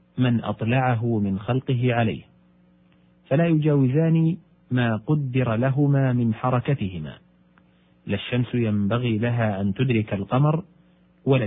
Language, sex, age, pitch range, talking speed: Arabic, male, 40-59, 95-140 Hz, 100 wpm